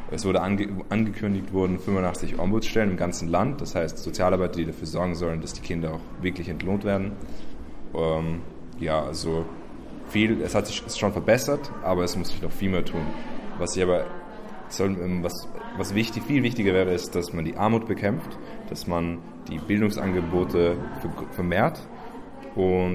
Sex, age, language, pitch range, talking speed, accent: male, 20-39, German, 85-95 Hz, 160 wpm, German